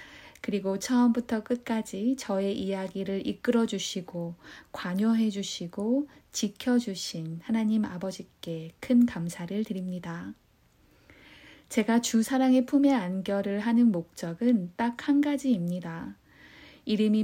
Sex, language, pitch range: female, Korean, 190-245 Hz